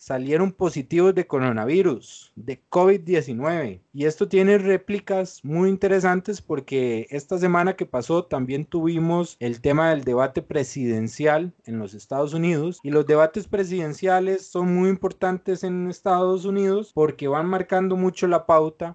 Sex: male